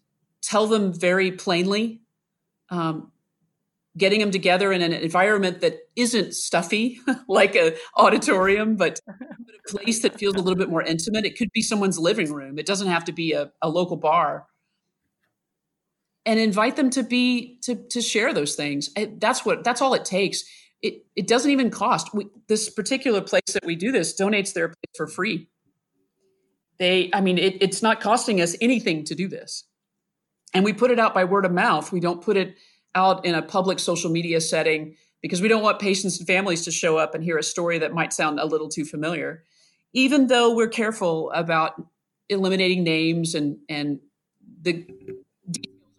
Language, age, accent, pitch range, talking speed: English, 30-49, American, 165-215 Hz, 185 wpm